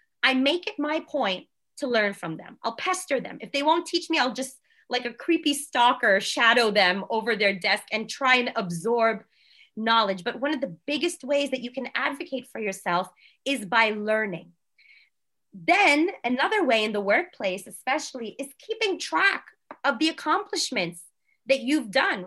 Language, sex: English, female